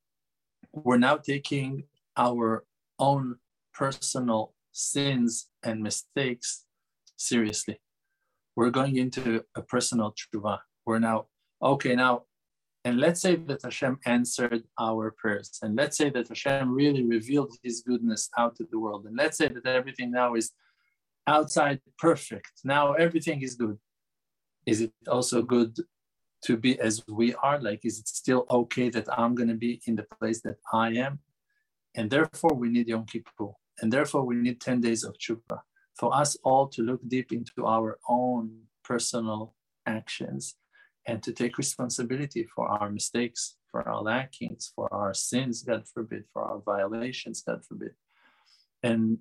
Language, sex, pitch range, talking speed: English, male, 115-135 Hz, 150 wpm